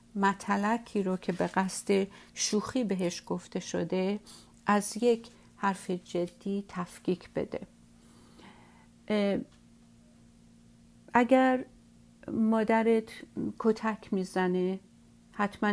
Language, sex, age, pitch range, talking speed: Persian, female, 50-69, 185-215 Hz, 75 wpm